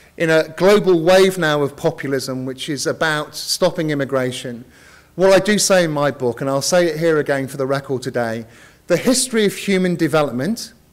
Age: 40-59